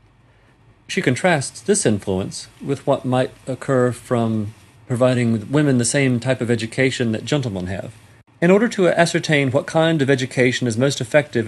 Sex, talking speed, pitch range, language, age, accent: male, 155 wpm, 115-145 Hz, English, 40-59, American